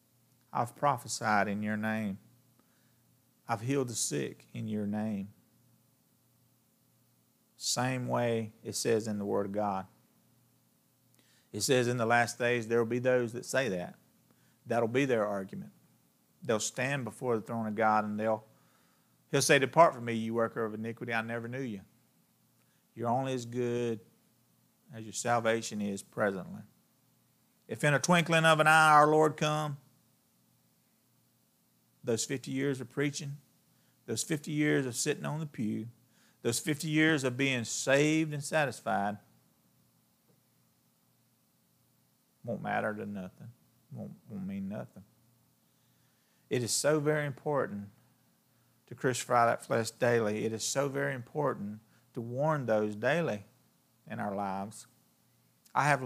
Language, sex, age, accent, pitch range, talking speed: English, male, 40-59, American, 110-140 Hz, 140 wpm